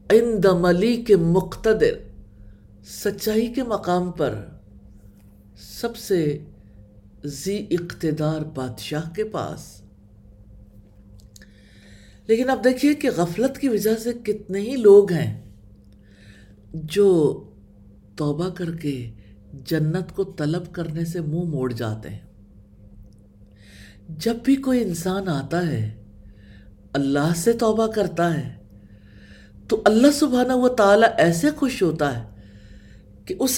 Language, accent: English, Indian